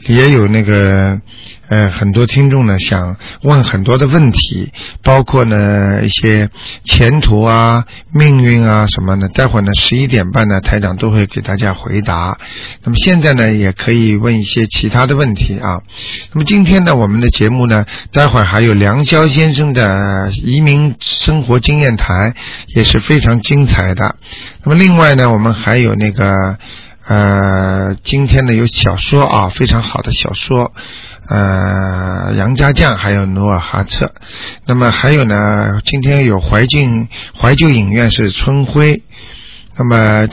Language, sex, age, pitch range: Chinese, male, 50-69, 105-130 Hz